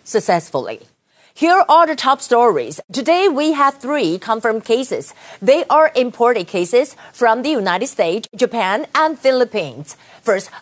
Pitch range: 220-290 Hz